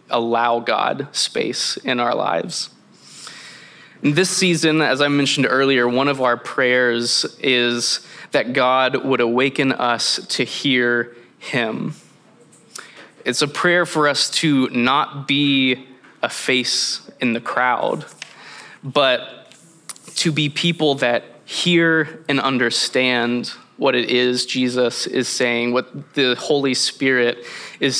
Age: 20-39